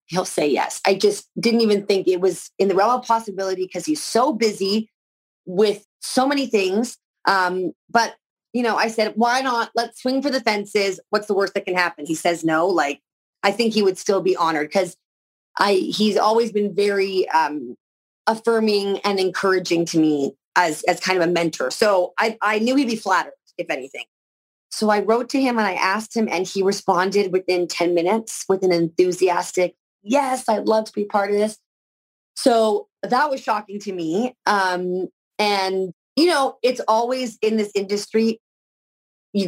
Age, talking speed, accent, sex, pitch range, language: 30-49, 185 wpm, American, female, 185-225 Hz, English